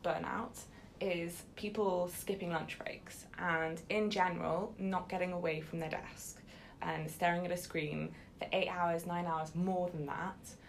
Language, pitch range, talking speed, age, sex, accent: English, 165-190 Hz, 155 wpm, 20-39, female, British